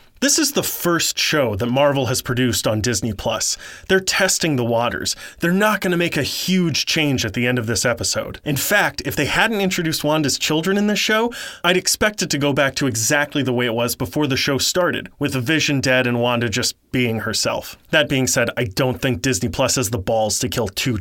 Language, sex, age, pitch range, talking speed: English, male, 30-49, 120-165 Hz, 225 wpm